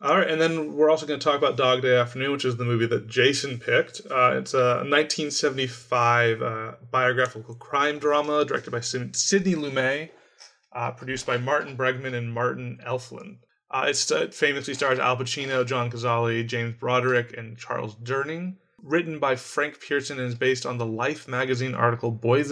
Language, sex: English, male